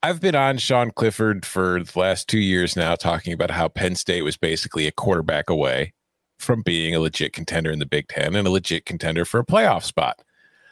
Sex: male